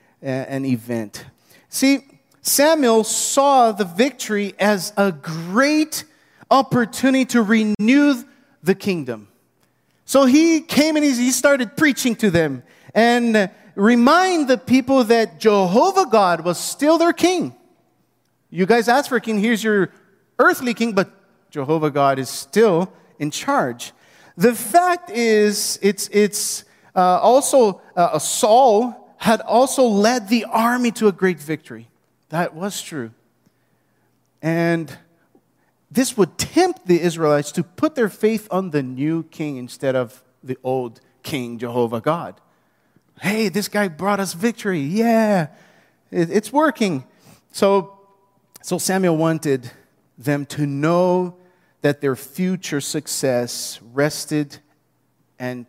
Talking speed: 125 wpm